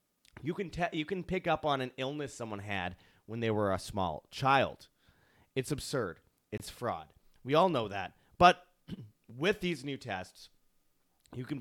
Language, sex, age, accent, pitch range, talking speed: English, male, 30-49, American, 100-135 Hz, 165 wpm